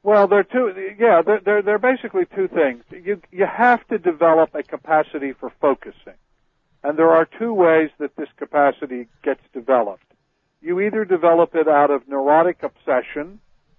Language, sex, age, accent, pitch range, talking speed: English, male, 50-69, American, 135-165 Hz, 160 wpm